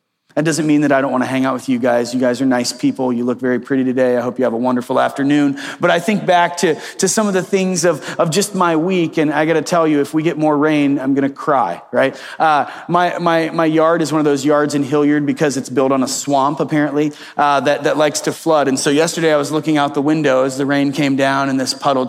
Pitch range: 135-165 Hz